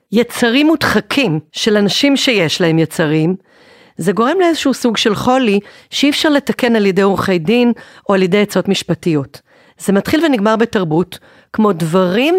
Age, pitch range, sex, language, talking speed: 40-59, 190-245 Hz, female, Hebrew, 150 wpm